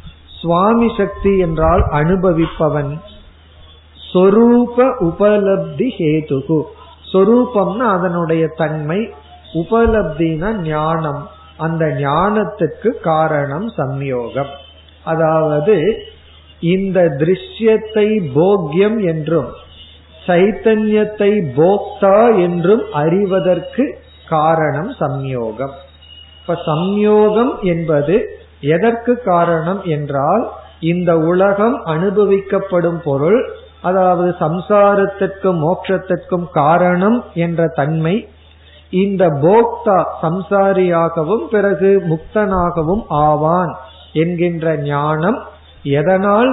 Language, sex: Tamil, male